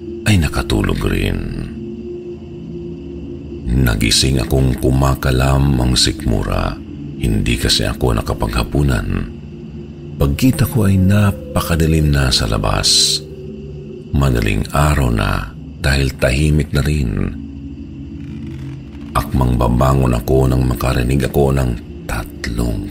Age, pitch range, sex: 50-69, 70-80 Hz, male